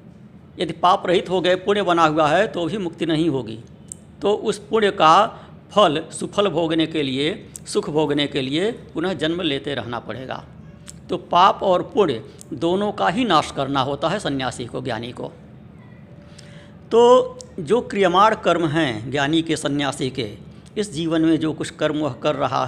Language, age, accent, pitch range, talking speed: Hindi, 60-79, native, 150-195 Hz, 170 wpm